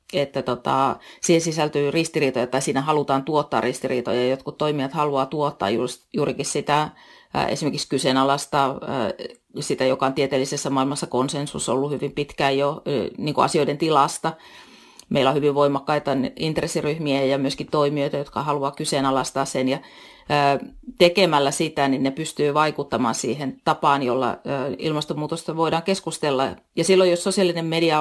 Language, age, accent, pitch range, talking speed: Finnish, 30-49, native, 135-165 Hz, 130 wpm